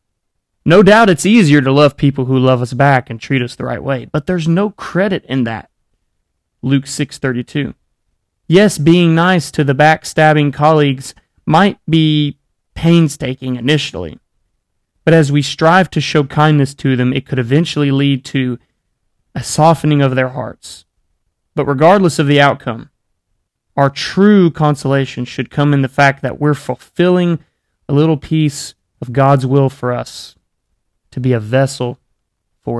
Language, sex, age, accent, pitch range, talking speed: English, male, 30-49, American, 125-165 Hz, 155 wpm